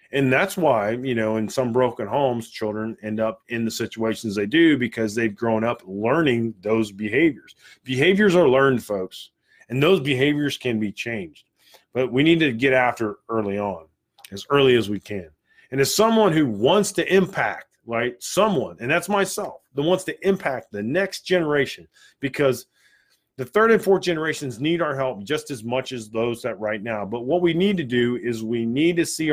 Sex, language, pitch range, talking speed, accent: male, English, 110-150 Hz, 190 wpm, American